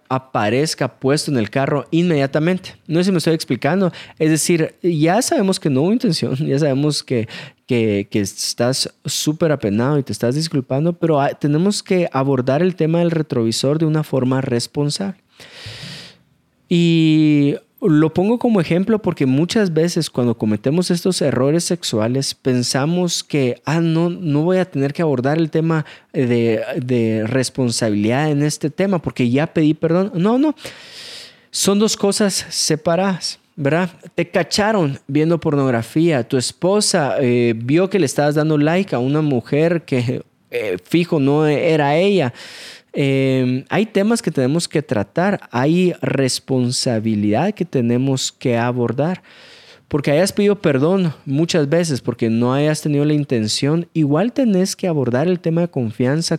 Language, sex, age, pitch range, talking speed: Spanish, male, 20-39, 130-175 Hz, 150 wpm